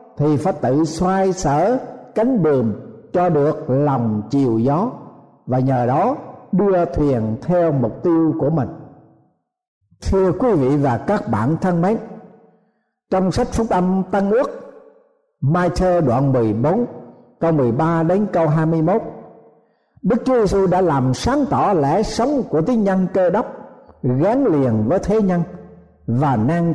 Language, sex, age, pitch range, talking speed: Vietnamese, male, 60-79, 130-195 Hz, 145 wpm